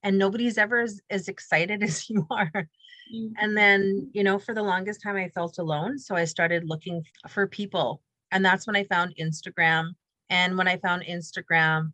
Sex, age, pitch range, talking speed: female, 30-49, 160-200 Hz, 185 wpm